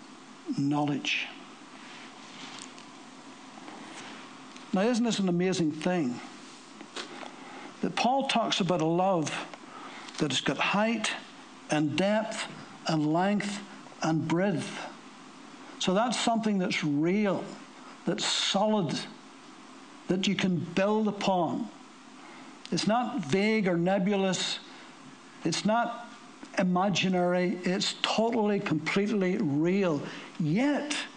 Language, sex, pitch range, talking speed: English, male, 205-275 Hz, 90 wpm